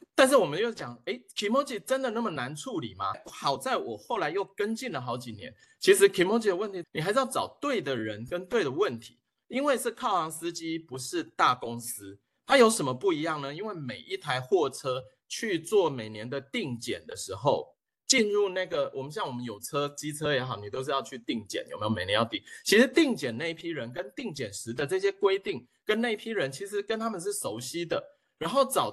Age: 30-49